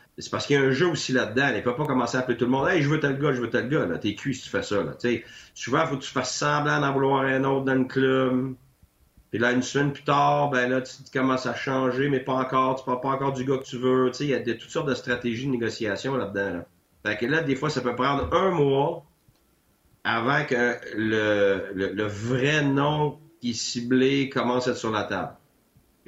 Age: 40-59